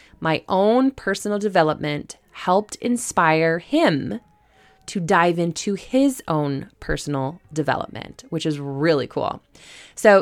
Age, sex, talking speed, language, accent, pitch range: 20-39, female, 110 wpm, English, American, 160-215 Hz